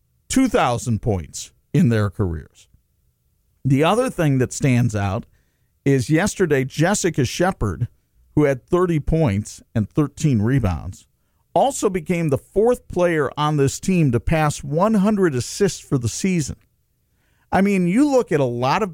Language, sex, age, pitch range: English, male, 50-69, 120-180 Hz